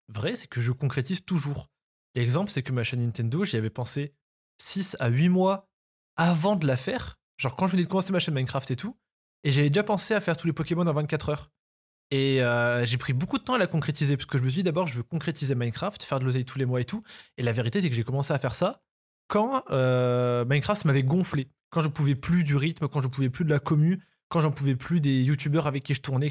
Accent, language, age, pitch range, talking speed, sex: French, French, 20-39, 125-160 Hz, 260 wpm, male